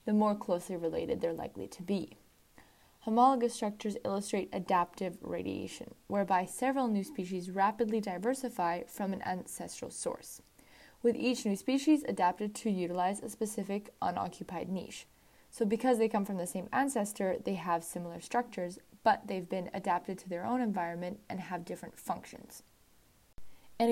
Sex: female